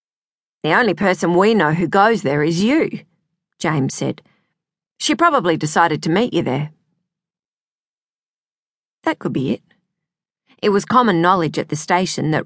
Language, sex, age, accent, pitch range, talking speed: English, female, 40-59, Australian, 160-205 Hz, 150 wpm